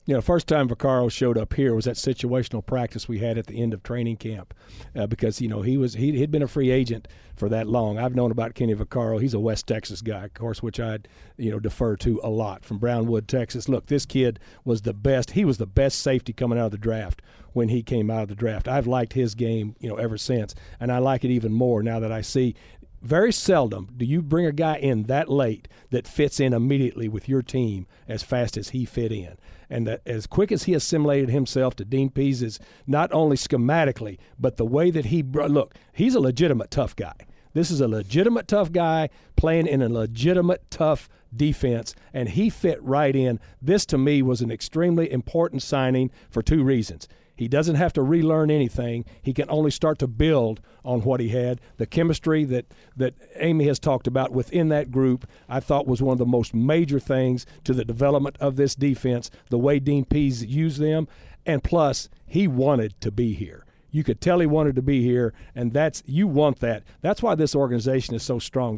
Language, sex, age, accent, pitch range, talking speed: English, male, 50-69, American, 115-145 Hz, 220 wpm